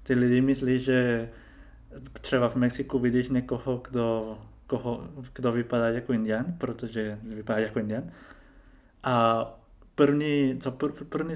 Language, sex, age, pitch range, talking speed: Czech, male, 20-39, 115-130 Hz, 105 wpm